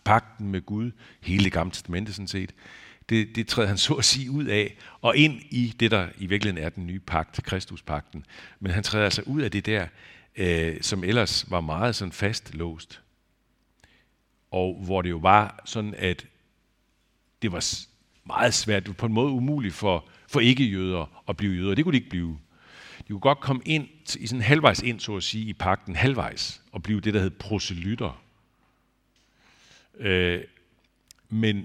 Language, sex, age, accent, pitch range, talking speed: Danish, male, 60-79, native, 90-120 Hz, 180 wpm